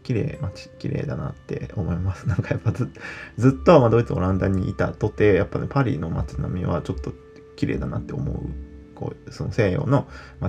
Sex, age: male, 20-39